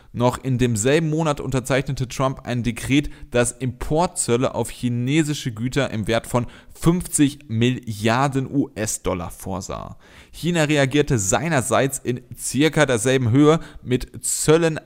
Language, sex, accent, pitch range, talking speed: German, male, German, 115-145 Hz, 115 wpm